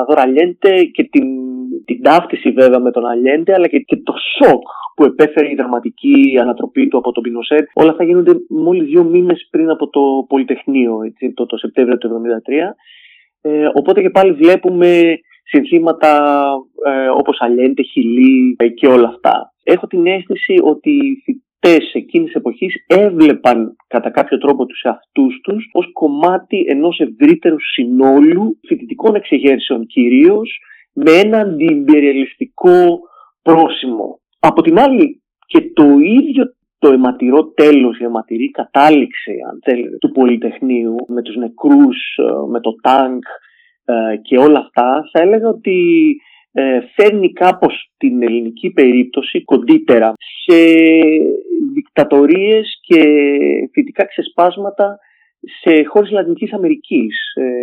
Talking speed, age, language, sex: 120 wpm, 30-49, Greek, male